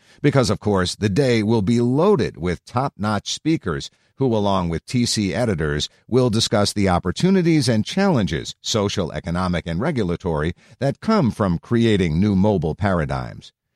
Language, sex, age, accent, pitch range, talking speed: English, male, 50-69, American, 95-125 Hz, 145 wpm